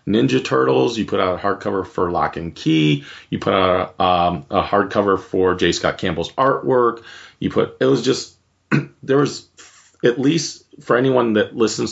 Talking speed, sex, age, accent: 185 wpm, male, 30-49, American